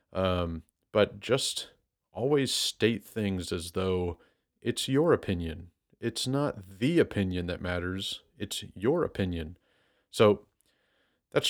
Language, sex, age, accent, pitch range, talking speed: English, male, 30-49, American, 90-110 Hz, 115 wpm